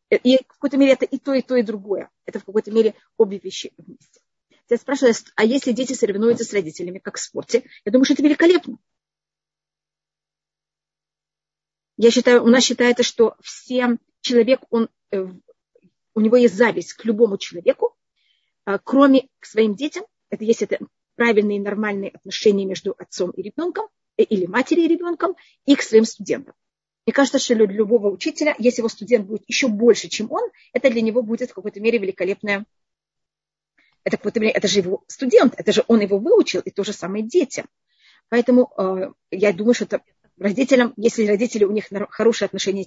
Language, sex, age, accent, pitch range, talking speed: Russian, female, 30-49, native, 205-260 Hz, 175 wpm